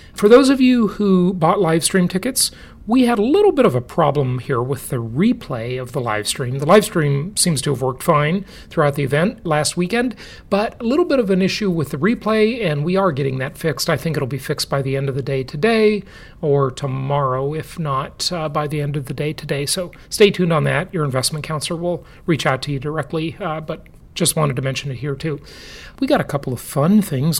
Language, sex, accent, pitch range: English, male, American, 140-190 Hz